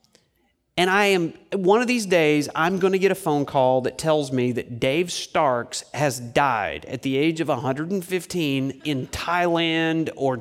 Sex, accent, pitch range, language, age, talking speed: male, American, 150-205 Hz, English, 40-59, 165 wpm